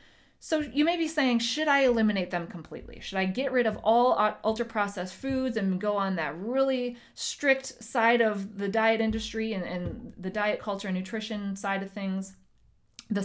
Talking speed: 185 wpm